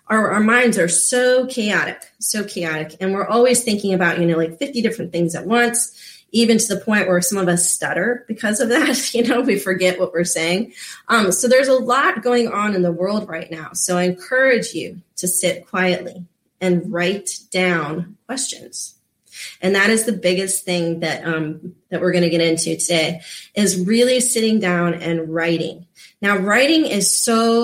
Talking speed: 190 wpm